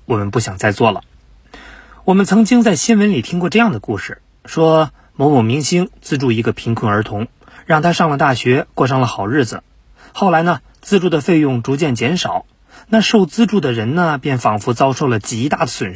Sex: male